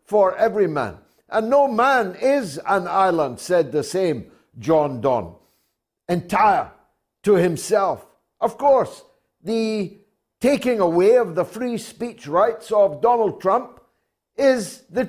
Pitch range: 175-230 Hz